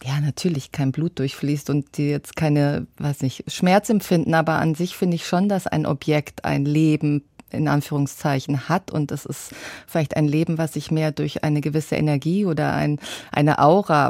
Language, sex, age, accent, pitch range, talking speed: German, female, 30-49, German, 150-170 Hz, 185 wpm